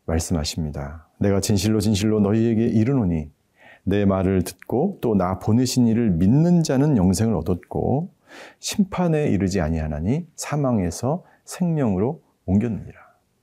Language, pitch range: Korean, 90-125 Hz